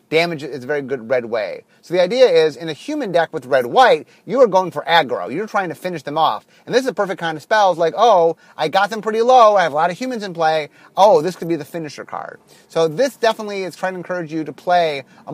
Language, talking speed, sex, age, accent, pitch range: English, 275 wpm, male, 30-49, American, 145-195 Hz